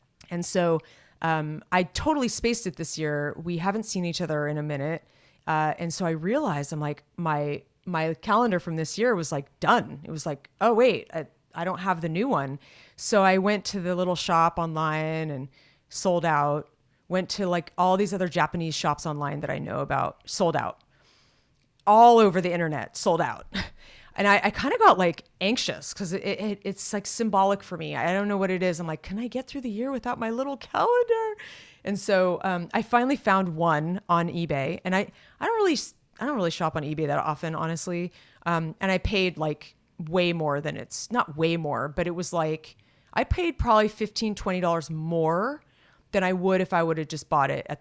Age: 30-49